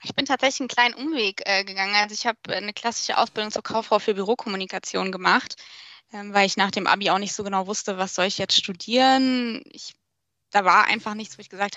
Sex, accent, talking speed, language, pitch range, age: female, German, 215 wpm, German, 205-245 Hz, 20-39